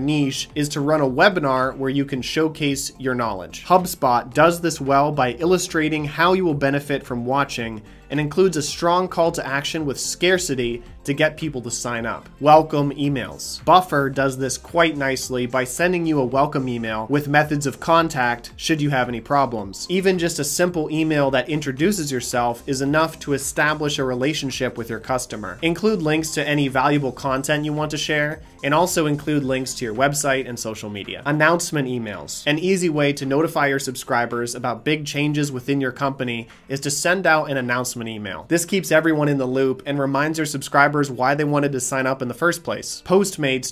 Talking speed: 195 wpm